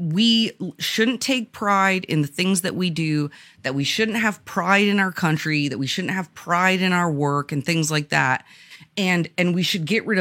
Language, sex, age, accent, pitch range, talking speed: English, female, 30-49, American, 160-220 Hz, 210 wpm